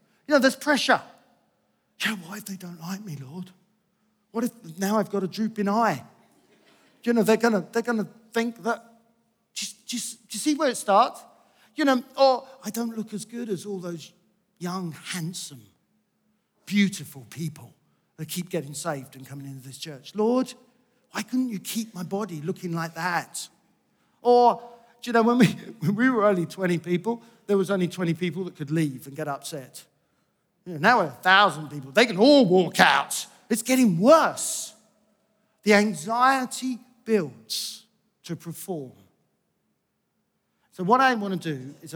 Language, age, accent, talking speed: English, 50-69, British, 175 wpm